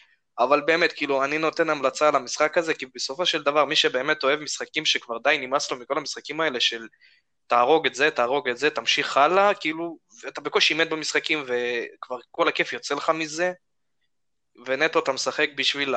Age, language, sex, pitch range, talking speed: 20-39, Hebrew, male, 130-165 Hz, 165 wpm